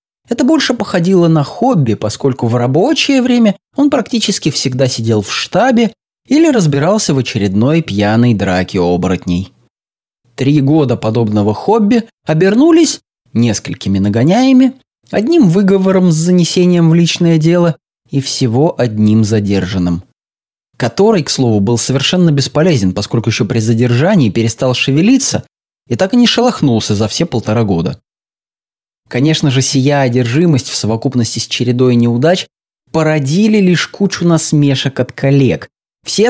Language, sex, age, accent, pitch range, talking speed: Russian, male, 20-39, native, 115-185 Hz, 125 wpm